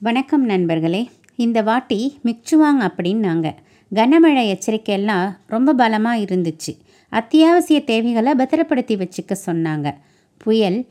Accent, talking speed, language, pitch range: Indian, 90 wpm, English, 190-275 Hz